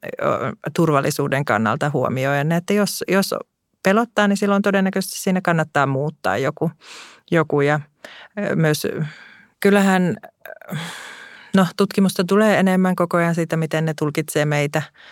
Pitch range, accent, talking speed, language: 145-185 Hz, native, 115 wpm, Finnish